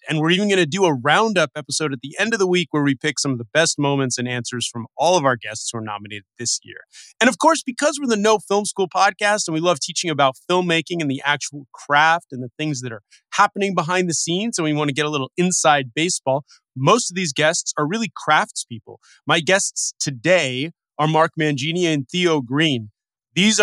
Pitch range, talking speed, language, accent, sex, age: 130-180 Hz, 230 wpm, English, American, male, 30-49